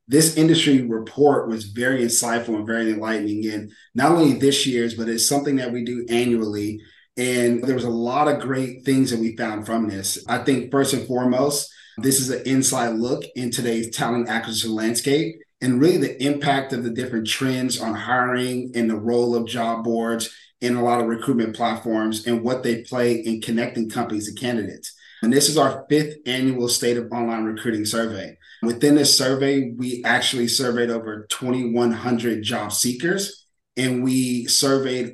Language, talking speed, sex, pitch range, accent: English, 180 wpm, male, 115-130 Hz, American